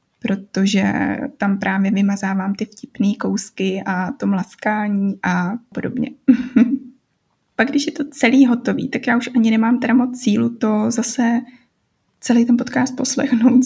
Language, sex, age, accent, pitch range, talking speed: Czech, female, 20-39, native, 200-245 Hz, 140 wpm